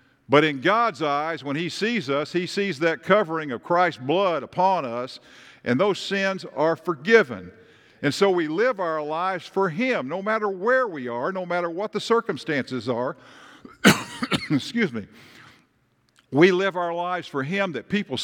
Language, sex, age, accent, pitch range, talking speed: English, male, 50-69, American, 130-185 Hz, 170 wpm